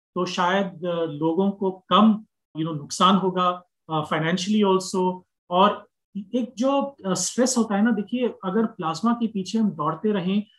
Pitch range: 160-205 Hz